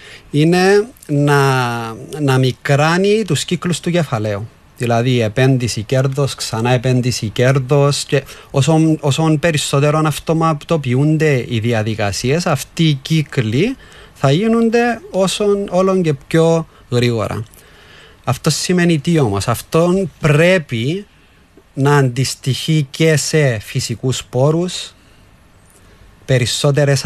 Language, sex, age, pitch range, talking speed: Greek, male, 30-49, 120-165 Hz, 95 wpm